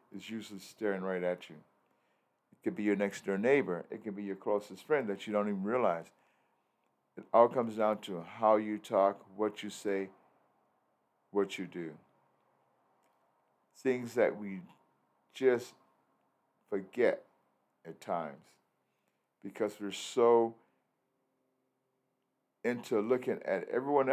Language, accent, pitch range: English, American, 95-120 Hz